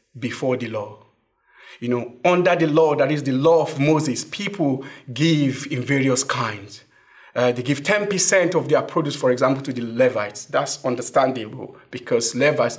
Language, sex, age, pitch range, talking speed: English, male, 50-69, 125-165 Hz, 165 wpm